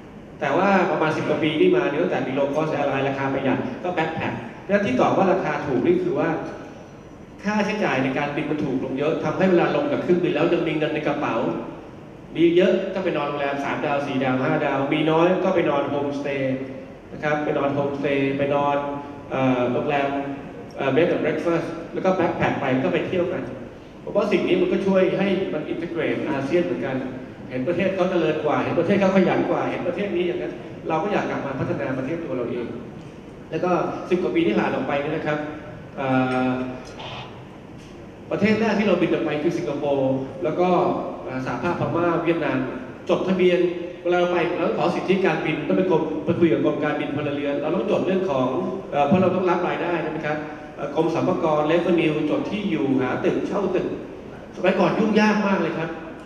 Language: English